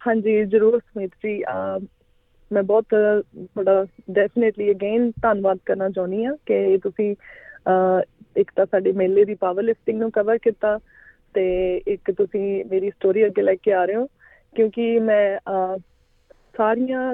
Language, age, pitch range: Punjabi, 20-39, 195-230 Hz